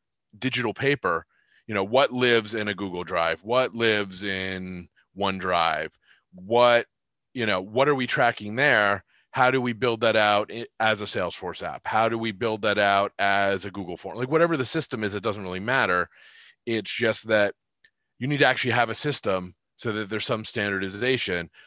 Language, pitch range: English, 105-130 Hz